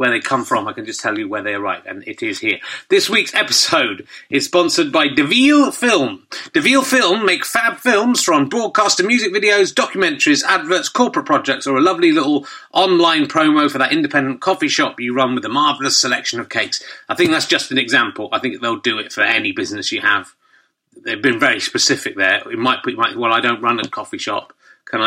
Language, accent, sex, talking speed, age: English, British, male, 210 wpm, 30-49